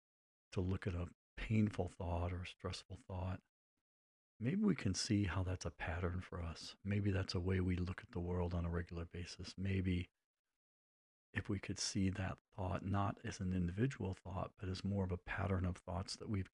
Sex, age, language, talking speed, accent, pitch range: male, 40-59, English, 200 wpm, American, 90-100 Hz